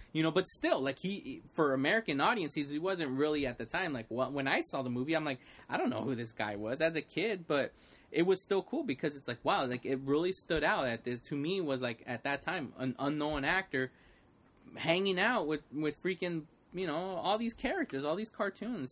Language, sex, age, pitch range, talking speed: English, male, 20-39, 125-170 Hz, 230 wpm